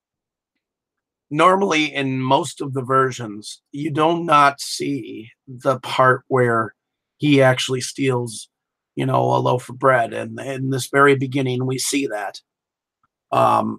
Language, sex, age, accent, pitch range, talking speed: English, male, 40-59, American, 125-135 Hz, 130 wpm